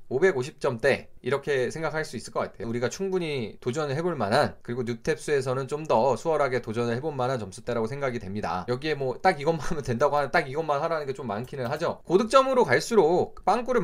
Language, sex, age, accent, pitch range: Korean, male, 20-39, native, 125-200 Hz